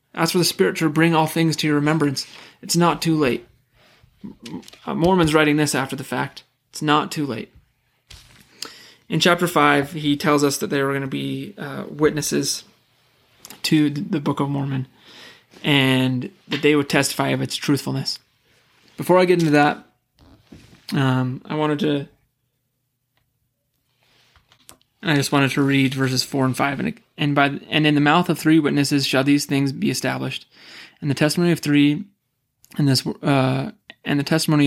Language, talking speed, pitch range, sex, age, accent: English, 165 wpm, 130-150 Hz, male, 20-39, American